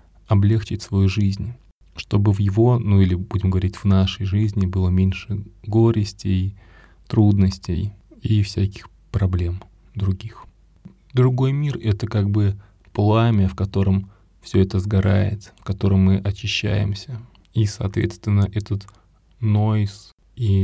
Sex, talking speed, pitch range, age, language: male, 120 wpm, 95-105 Hz, 20-39, Russian